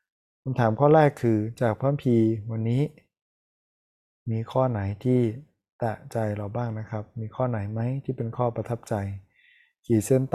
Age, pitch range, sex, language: 20-39, 110-130 Hz, male, Thai